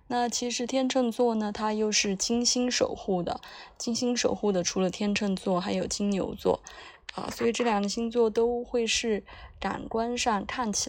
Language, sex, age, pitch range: Chinese, female, 20-39, 185-225 Hz